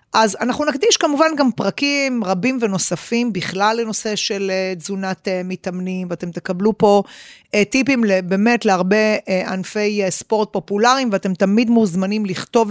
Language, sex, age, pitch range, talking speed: Hebrew, female, 30-49, 185-245 Hz, 125 wpm